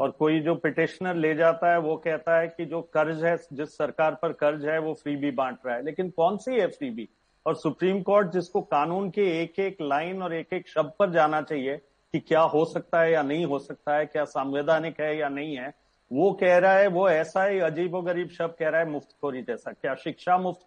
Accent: native